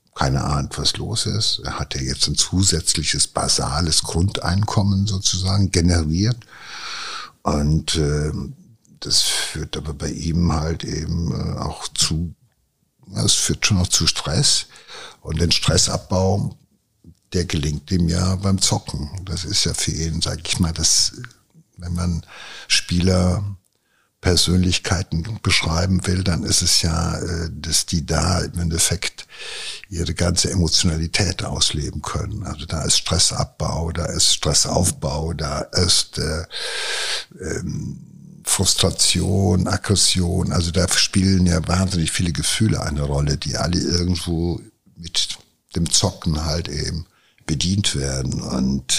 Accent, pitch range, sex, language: German, 80-95 Hz, male, German